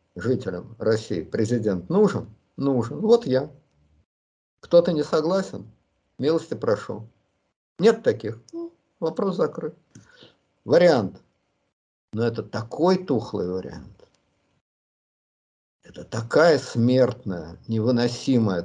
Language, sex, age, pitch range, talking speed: Russian, male, 50-69, 95-130 Hz, 85 wpm